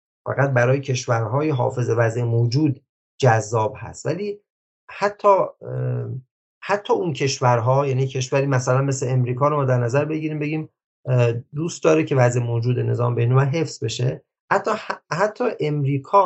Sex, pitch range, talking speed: male, 120-145 Hz, 130 wpm